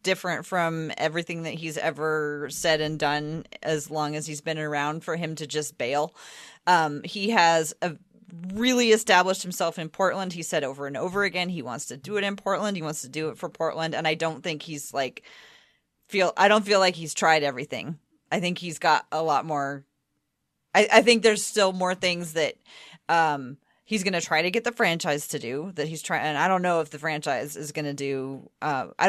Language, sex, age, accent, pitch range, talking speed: English, female, 30-49, American, 150-185 Hz, 215 wpm